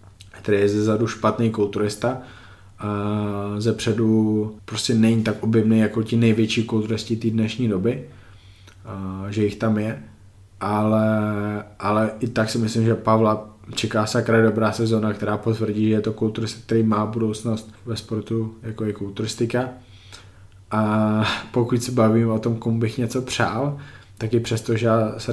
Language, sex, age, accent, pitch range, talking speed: Czech, male, 20-39, native, 105-115 Hz, 150 wpm